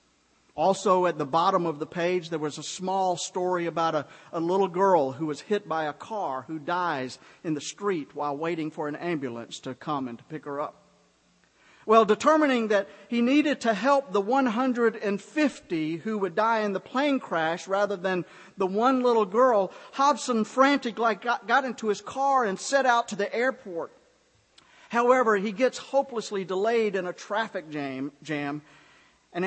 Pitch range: 155-220 Hz